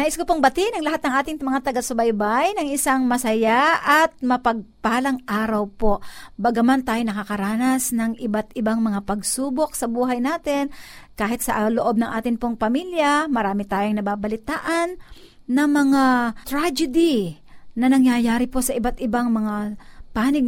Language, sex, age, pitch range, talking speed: Filipino, female, 50-69, 230-295 Hz, 145 wpm